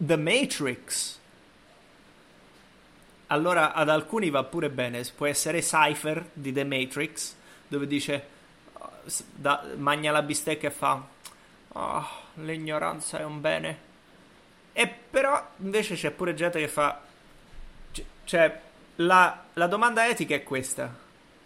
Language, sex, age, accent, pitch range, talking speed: English, male, 30-49, Italian, 145-175 Hz, 110 wpm